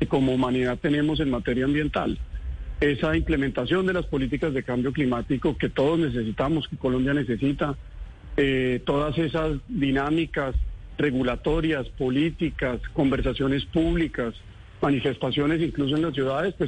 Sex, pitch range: male, 125-160 Hz